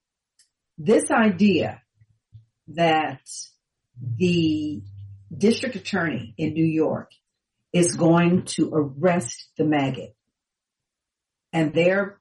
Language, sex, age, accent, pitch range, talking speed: English, female, 50-69, American, 145-190 Hz, 85 wpm